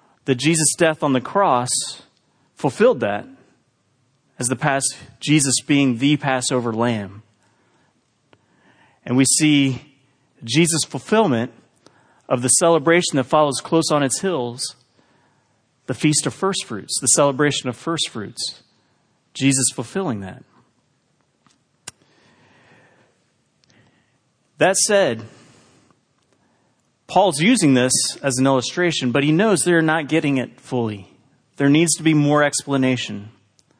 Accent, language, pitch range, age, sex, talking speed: American, English, 130-175 Hz, 30-49, male, 115 wpm